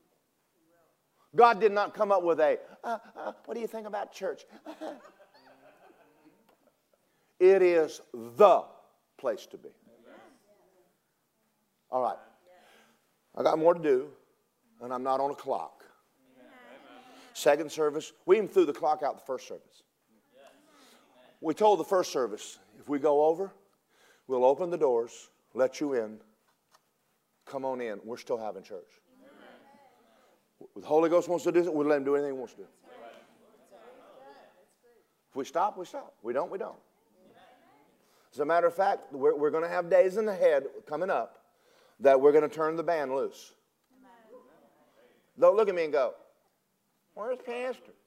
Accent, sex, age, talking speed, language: American, male, 50-69, 155 wpm, English